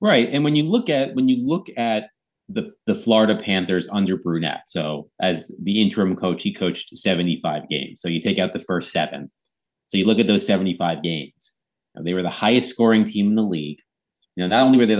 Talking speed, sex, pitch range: 215 wpm, male, 95-115 Hz